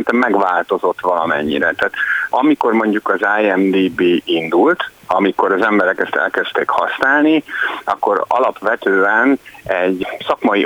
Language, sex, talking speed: Hungarian, male, 100 wpm